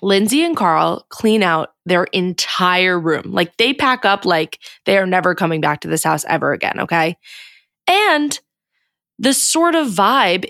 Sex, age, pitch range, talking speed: female, 20-39, 185-265 Hz, 165 wpm